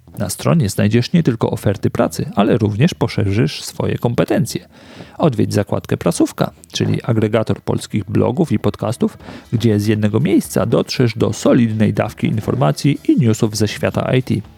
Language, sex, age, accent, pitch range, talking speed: Polish, male, 40-59, native, 105-145 Hz, 145 wpm